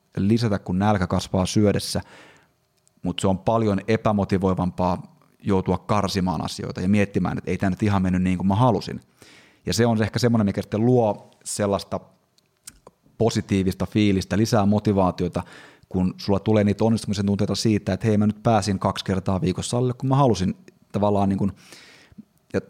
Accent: native